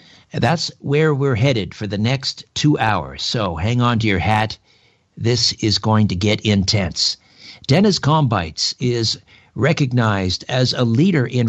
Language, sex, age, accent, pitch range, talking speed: English, male, 60-79, American, 110-140 Hz, 150 wpm